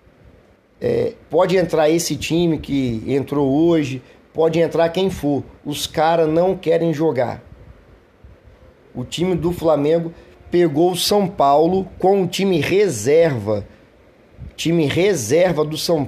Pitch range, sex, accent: 135-180 Hz, male, Brazilian